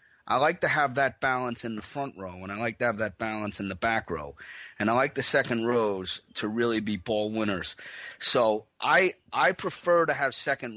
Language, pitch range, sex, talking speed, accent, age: English, 110-140 Hz, male, 215 wpm, American, 30-49